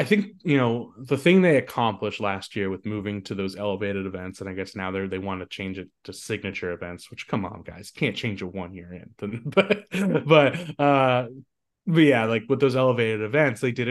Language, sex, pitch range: English, male, 95-125 Hz